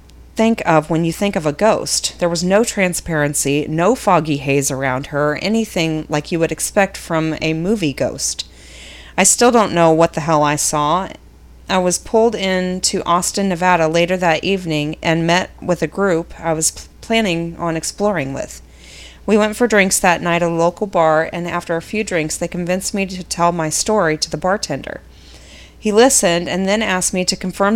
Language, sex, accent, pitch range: English, female, American, 160-200 Hz